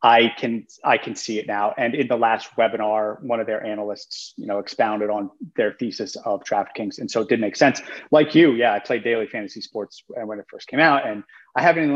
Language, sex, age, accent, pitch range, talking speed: English, male, 30-49, American, 115-150 Hz, 240 wpm